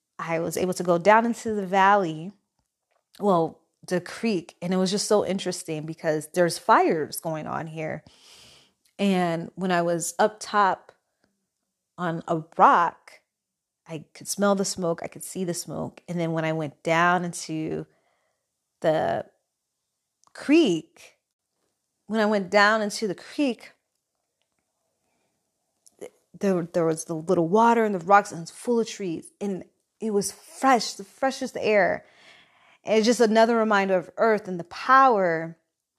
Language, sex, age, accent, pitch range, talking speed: English, female, 30-49, American, 165-210 Hz, 145 wpm